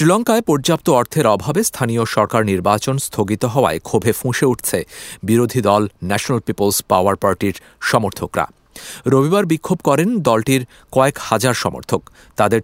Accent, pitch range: Indian, 90-130 Hz